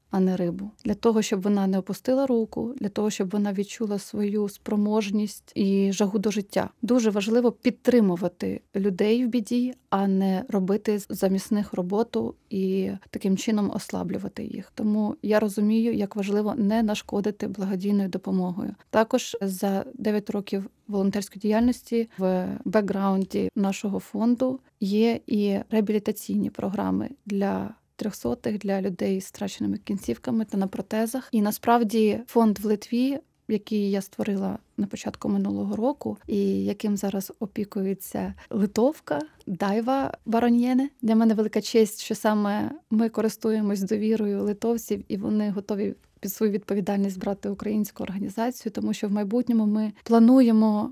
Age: 20-39